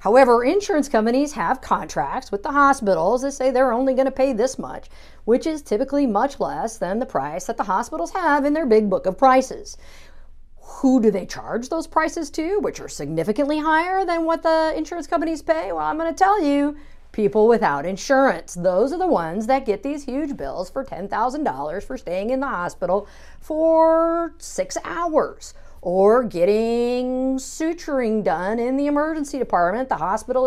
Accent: American